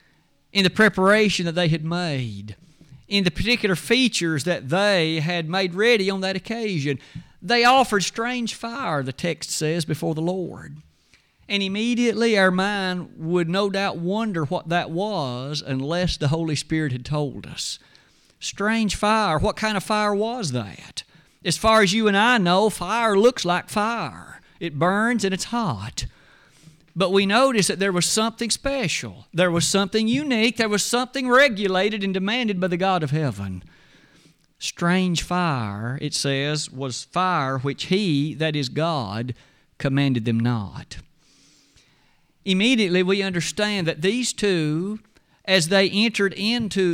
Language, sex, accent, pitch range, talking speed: English, male, American, 155-210 Hz, 150 wpm